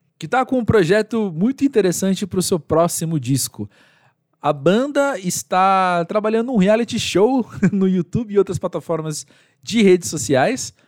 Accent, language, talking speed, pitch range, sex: Brazilian, Portuguese, 150 wpm, 155-210 Hz, male